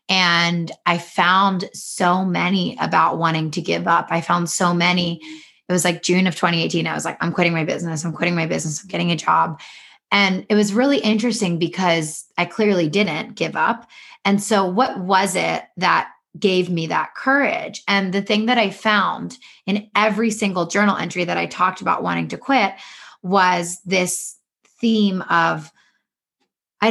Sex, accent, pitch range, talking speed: female, American, 180-230 Hz, 175 wpm